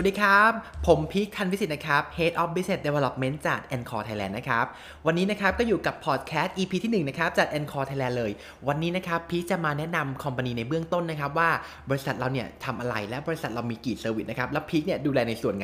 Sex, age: male, 20-39